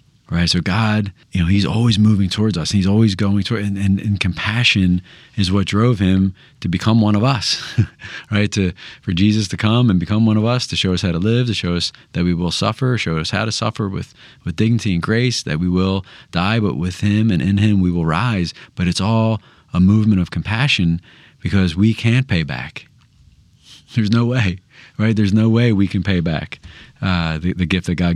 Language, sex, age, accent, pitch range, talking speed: English, male, 30-49, American, 90-110 Hz, 220 wpm